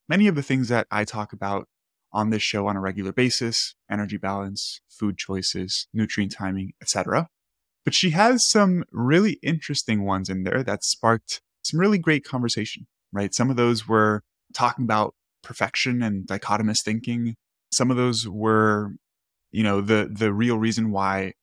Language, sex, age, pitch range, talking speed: English, male, 20-39, 105-130 Hz, 170 wpm